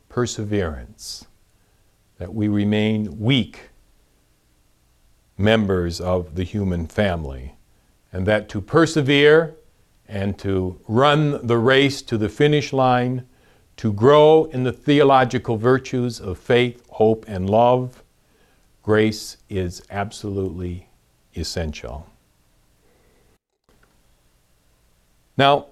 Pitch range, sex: 95-135 Hz, male